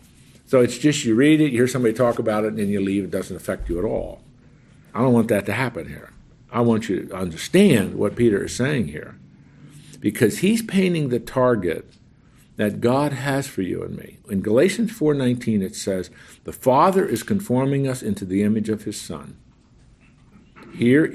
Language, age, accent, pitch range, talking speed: English, 50-69, American, 105-140 Hz, 195 wpm